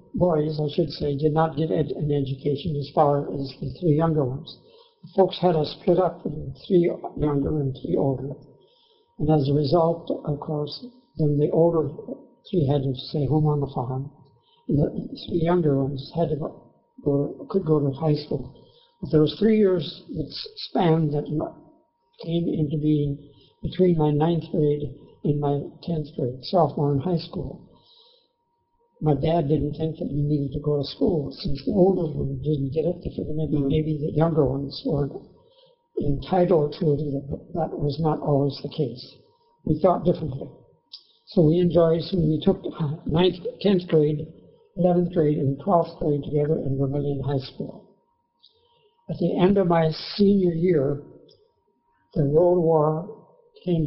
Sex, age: male, 60-79